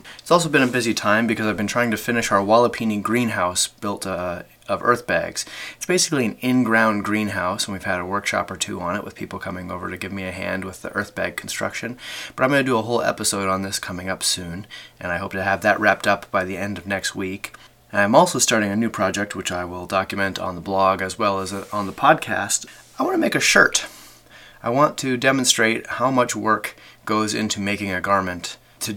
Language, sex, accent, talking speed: English, male, American, 235 wpm